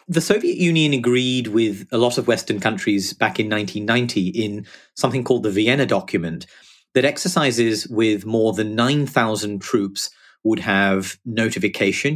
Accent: British